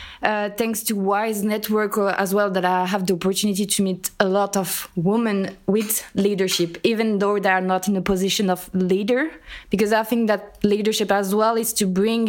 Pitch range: 195-225 Hz